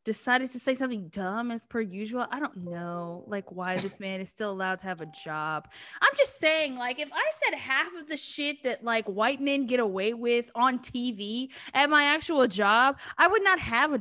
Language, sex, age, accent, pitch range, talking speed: English, female, 10-29, American, 210-275 Hz, 220 wpm